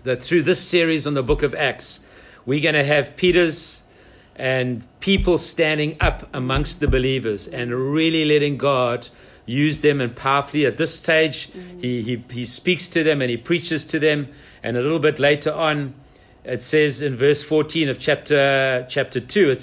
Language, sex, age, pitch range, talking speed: English, male, 60-79, 130-155 Hz, 180 wpm